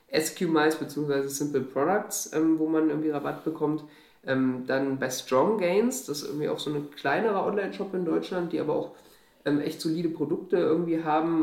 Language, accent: German, German